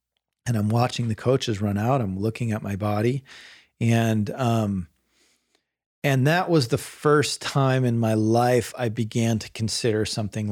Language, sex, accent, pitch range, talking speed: English, male, American, 110-130 Hz, 160 wpm